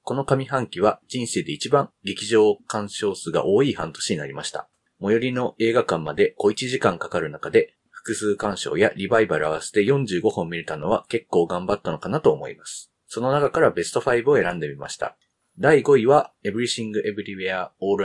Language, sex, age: Japanese, male, 30-49